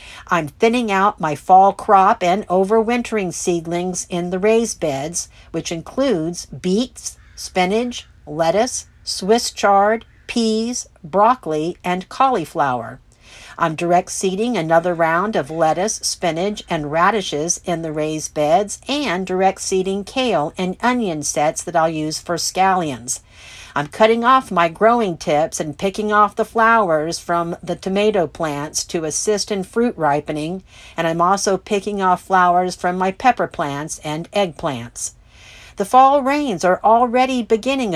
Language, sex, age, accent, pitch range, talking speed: English, female, 60-79, American, 160-210 Hz, 140 wpm